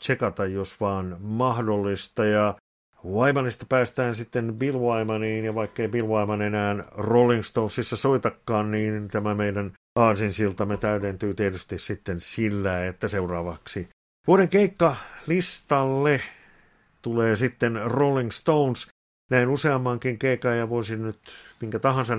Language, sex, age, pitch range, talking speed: Finnish, male, 50-69, 105-125 Hz, 110 wpm